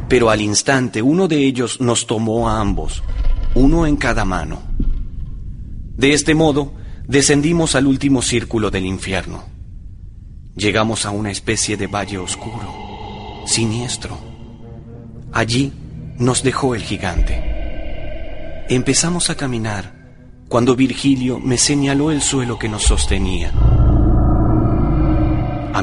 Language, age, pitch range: Spanish, 30-49, 100-130 Hz